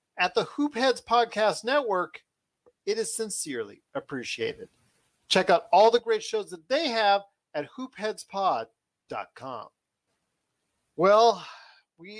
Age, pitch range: 40-59, 135-195 Hz